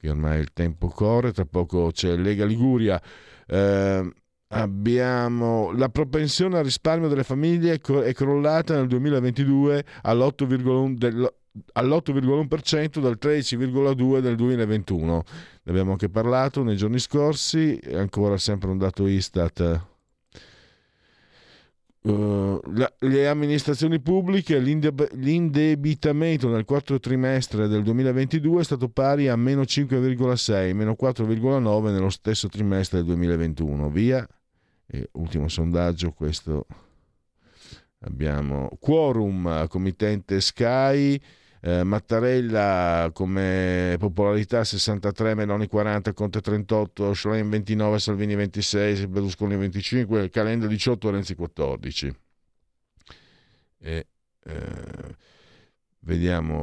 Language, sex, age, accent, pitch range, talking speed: Italian, male, 50-69, native, 95-130 Hz, 95 wpm